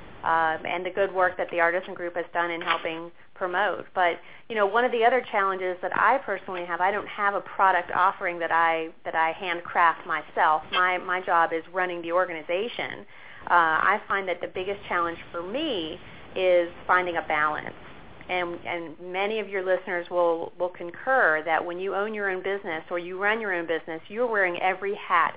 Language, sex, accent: English, female, American